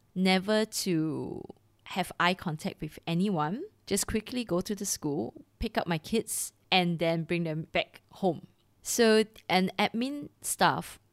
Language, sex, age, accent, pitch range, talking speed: English, female, 20-39, Malaysian, 165-205 Hz, 145 wpm